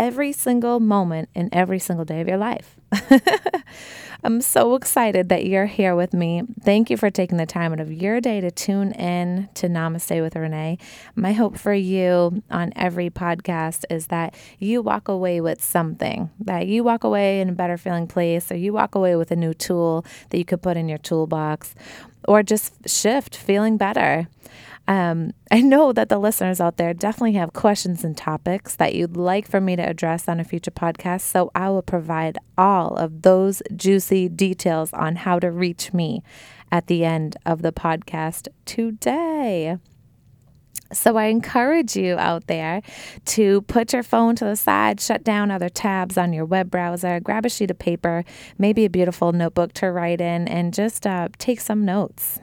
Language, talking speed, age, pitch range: English, 185 wpm, 20-39, 165-205 Hz